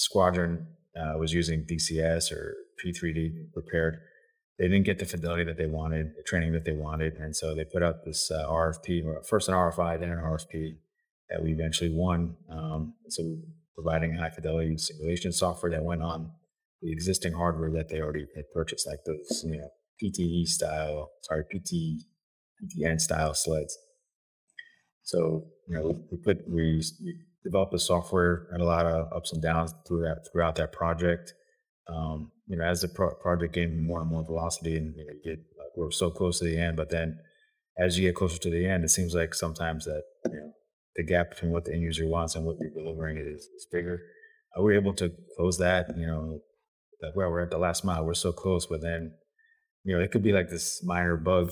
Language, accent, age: English, American, 30-49